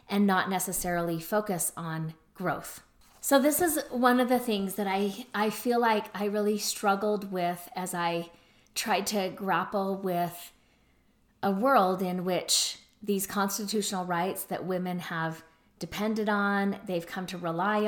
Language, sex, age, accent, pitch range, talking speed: English, female, 30-49, American, 175-205 Hz, 150 wpm